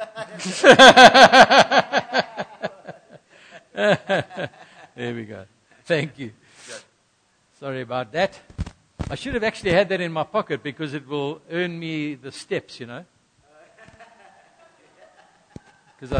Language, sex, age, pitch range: English, male, 60-79, 140-195 Hz